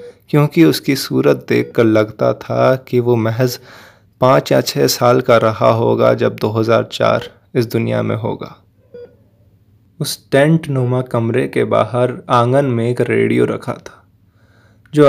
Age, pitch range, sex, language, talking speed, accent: 20-39, 110-130 Hz, male, Hindi, 140 wpm, native